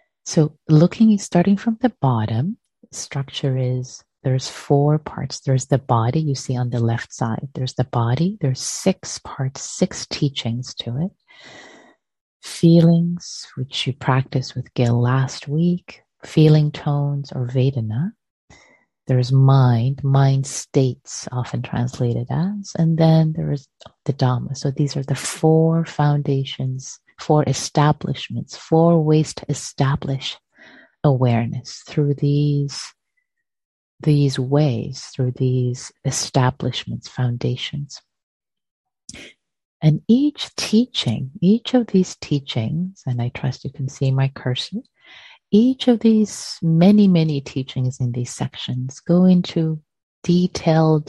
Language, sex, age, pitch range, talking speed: English, female, 30-49, 130-165 Hz, 120 wpm